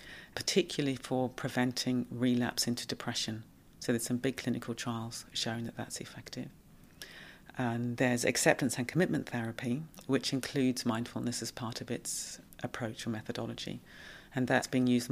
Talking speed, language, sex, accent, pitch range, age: 145 wpm, English, female, British, 115-130 Hz, 40-59